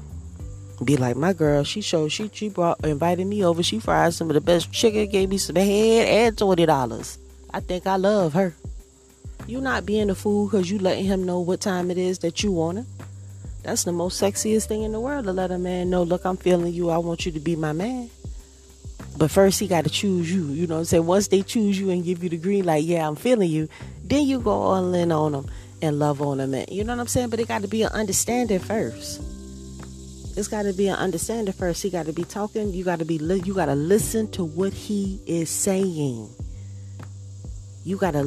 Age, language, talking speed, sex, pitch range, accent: 30-49, English, 240 wpm, female, 145-205 Hz, American